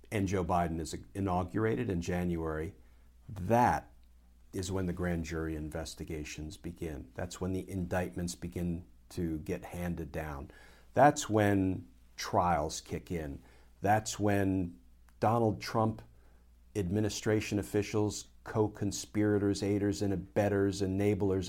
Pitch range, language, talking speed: 80-105 Hz, English, 110 wpm